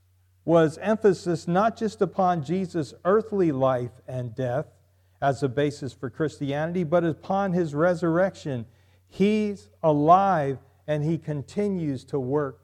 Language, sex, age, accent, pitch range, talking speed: English, male, 50-69, American, 130-175 Hz, 125 wpm